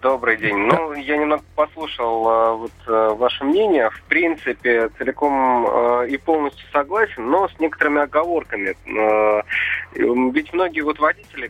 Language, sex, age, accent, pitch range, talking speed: Russian, male, 20-39, native, 115-150 Hz, 110 wpm